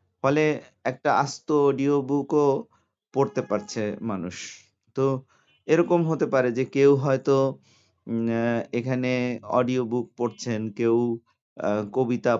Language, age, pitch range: Bengali, 50-69, 115-140 Hz